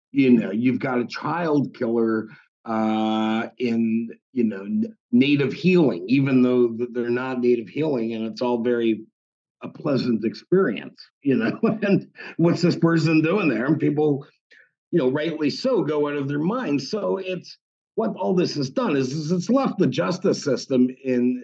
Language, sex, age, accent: English, male, 50-69, American